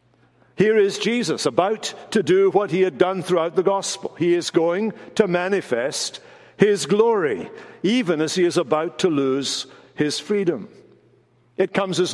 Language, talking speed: English, 160 wpm